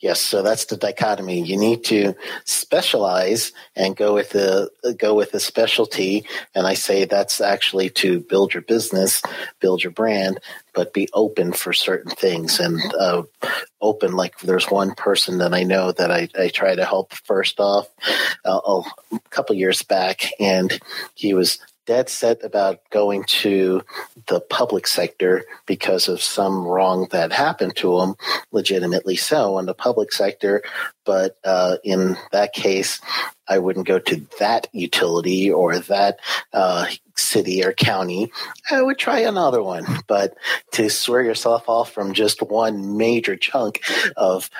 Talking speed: 155 wpm